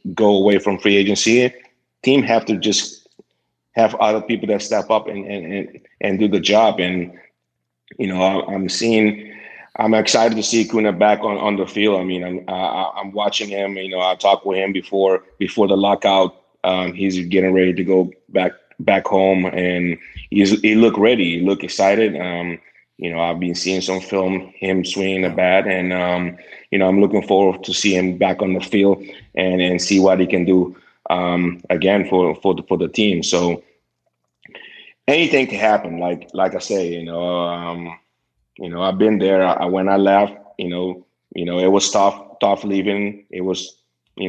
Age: 30-49